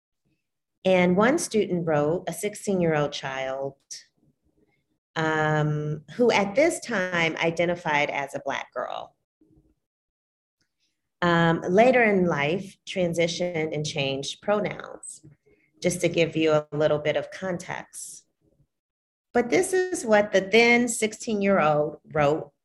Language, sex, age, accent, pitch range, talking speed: English, female, 40-59, American, 155-210 Hz, 120 wpm